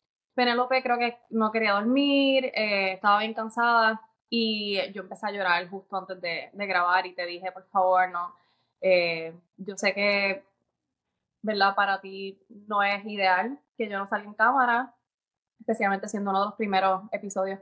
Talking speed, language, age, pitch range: 165 wpm, English, 20-39, 190-225 Hz